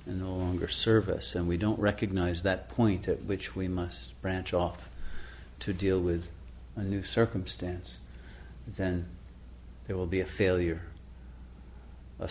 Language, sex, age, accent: English, male, 50-69, American